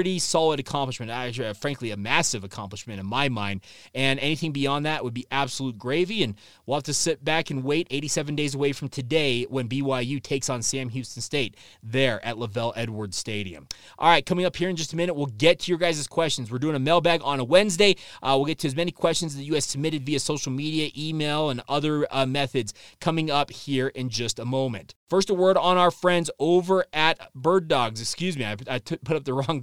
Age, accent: 20-39, American